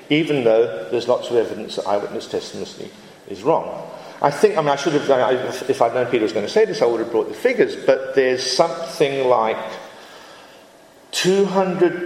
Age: 50-69